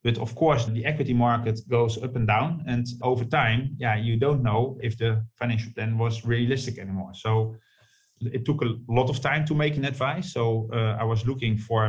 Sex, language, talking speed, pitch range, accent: male, English, 205 wpm, 110-125 Hz, Dutch